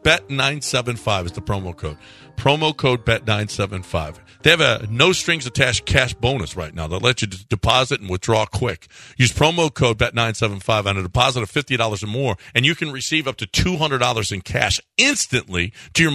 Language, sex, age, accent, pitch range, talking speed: English, male, 50-69, American, 110-145 Hz, 180 wpm